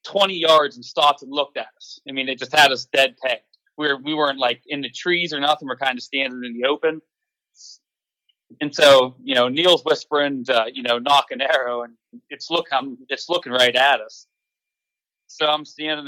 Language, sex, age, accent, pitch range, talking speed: English, male, 30-49, American, 125-155 Hz, 215 wpm